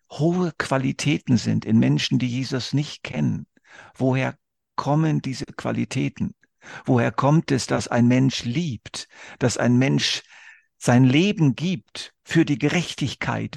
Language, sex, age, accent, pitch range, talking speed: German, male, 50-69, German, 125-150 Hz, 130 wpm